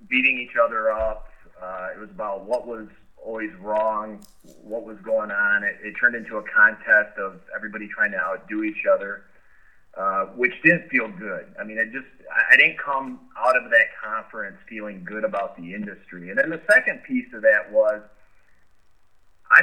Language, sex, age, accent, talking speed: English, male, 30-49, American, 175 wpm